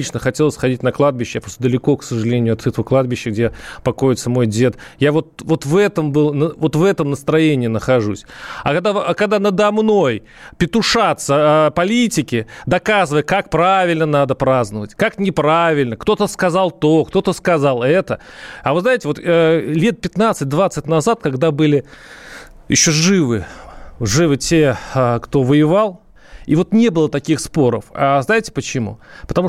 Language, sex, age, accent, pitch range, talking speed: Russian, male, 30-49, native, 130-180 Hz, 145 wpm